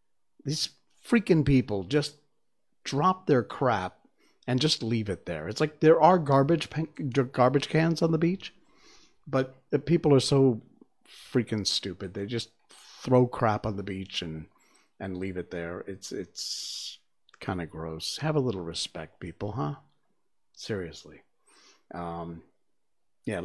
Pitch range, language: 95-145 Hz, English